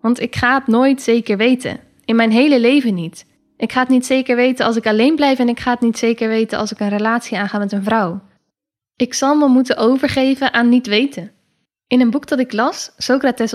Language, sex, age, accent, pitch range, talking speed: Dutch, female, 10-29, Dutch, 210-260 Hz, 230 wpm